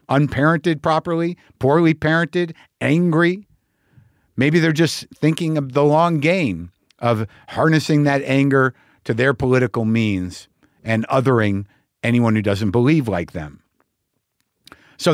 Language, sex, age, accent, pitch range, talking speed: English, male, 50-69, American, 115-155 Hz, 120 wpm